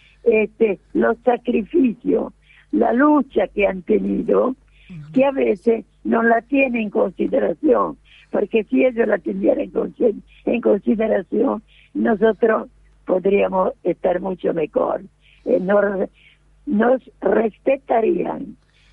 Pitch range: 195-245 Hz